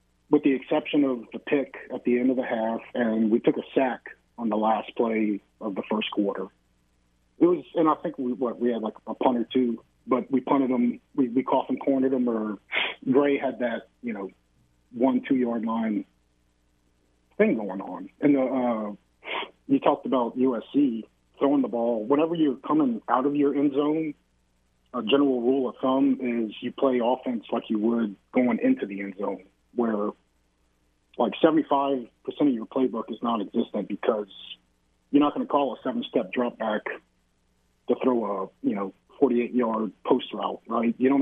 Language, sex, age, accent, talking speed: English, male, 30-49, American, 190 wpm